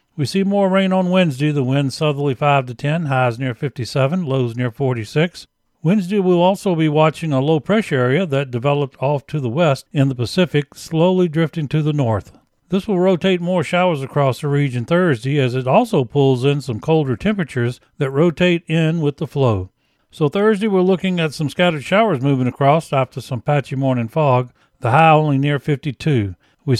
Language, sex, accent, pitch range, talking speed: English, male, American, 135-175 Hz, 190 wpm